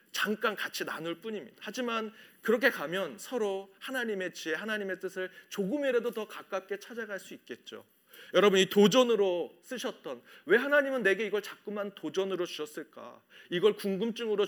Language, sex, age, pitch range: Korean, male, 40-59, 175-220 Hz